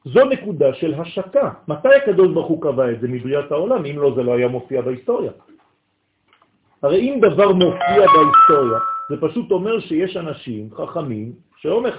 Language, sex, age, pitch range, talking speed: French, male, 50-69, 125-200 Hz, 155 wpm